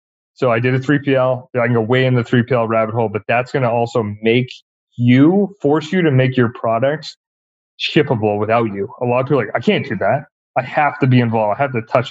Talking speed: 240 wpm